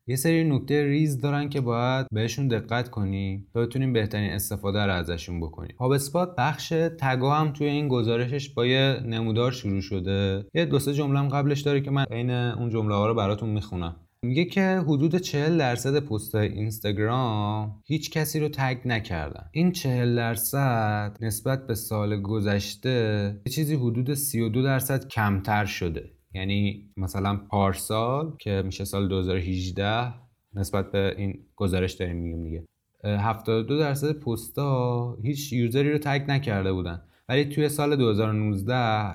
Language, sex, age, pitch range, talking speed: Persian, male, 20-39, 100-140 Hz, 150 wpm